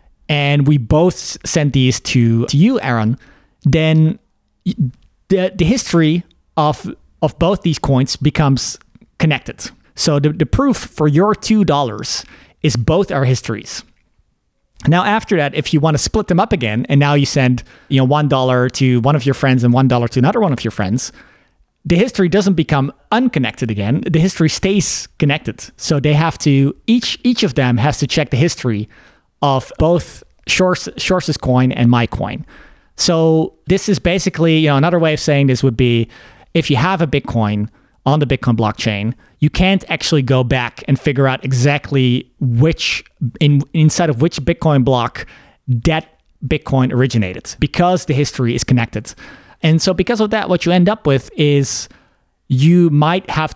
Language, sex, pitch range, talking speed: English, male, 125-165 Hz, 175 wpm